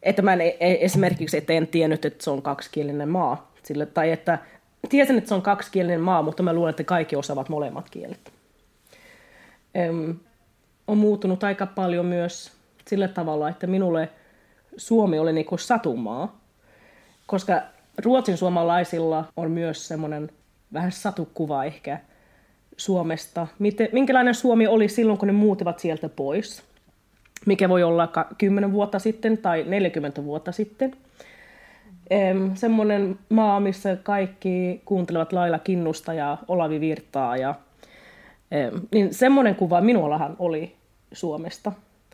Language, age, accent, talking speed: Finnish, 30-49, native, 125 wpm